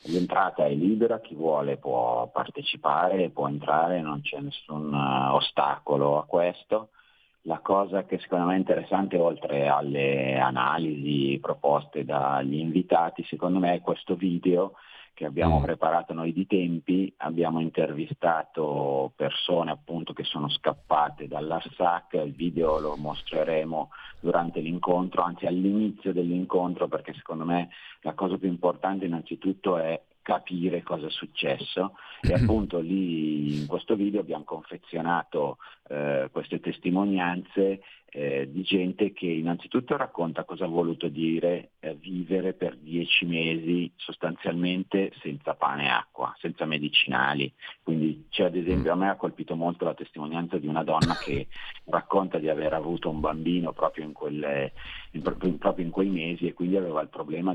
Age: 40-59